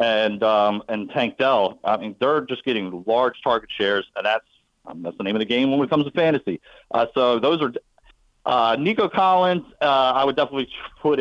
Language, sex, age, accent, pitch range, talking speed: English, male, 40-59, American, 105-140 Hz, 215 wpm